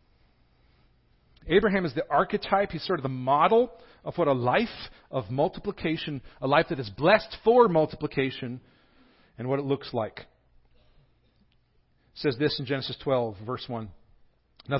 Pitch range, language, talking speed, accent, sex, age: 130-185 Hz, English, 145 wpm, American, male, 40-59